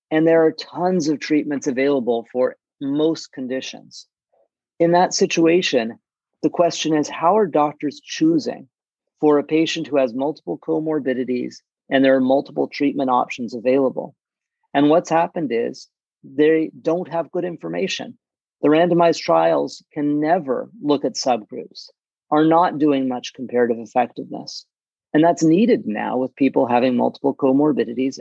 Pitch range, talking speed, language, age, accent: 135-165 Hz, 140 wpm, English, 40-59, American